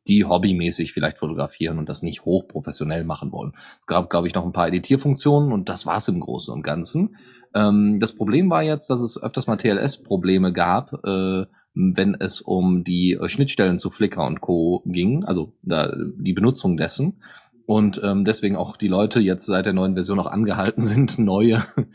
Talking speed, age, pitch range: 185 wpm, 30-49, 90-115 Hz